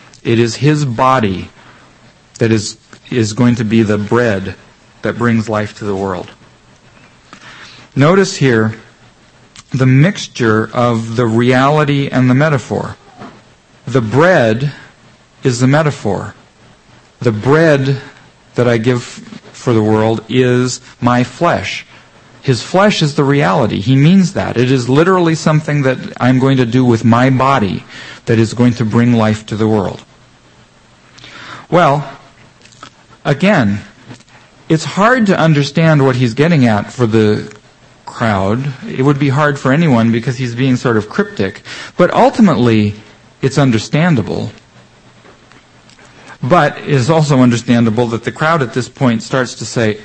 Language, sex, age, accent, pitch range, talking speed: English, male, 50-69, American, 115-145 Hz, 140 wpm